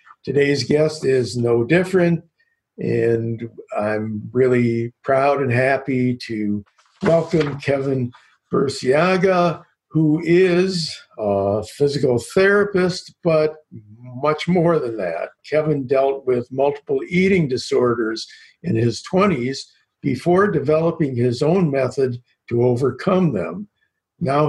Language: English